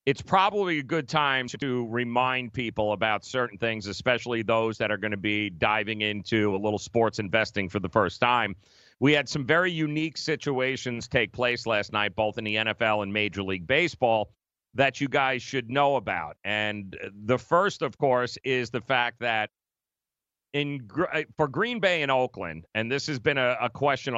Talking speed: 185 wpm